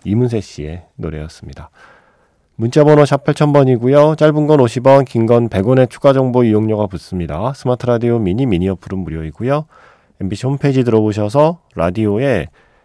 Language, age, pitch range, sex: Korean, 40-59, 90-130 Hz, male